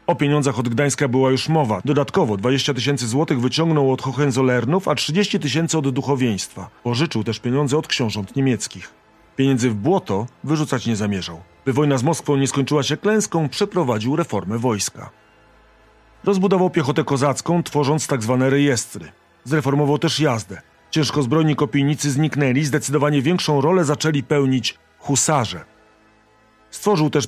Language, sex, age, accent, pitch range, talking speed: Polish, male, 40-59, native, 110-150 Hz, 140 wpm